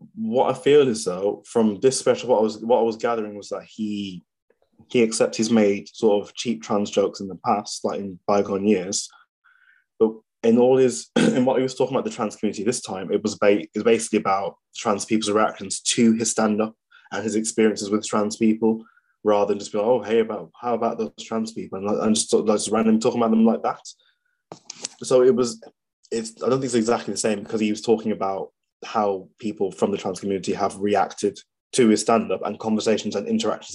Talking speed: 220 wpm